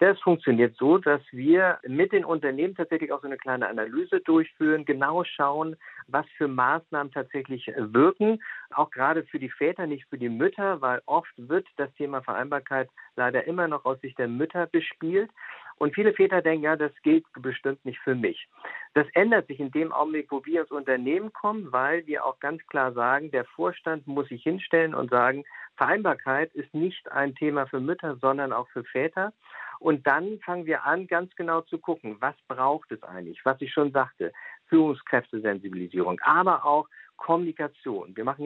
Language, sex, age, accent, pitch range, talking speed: German, male, 50-69, German, 135-170 Hz, 180 wpm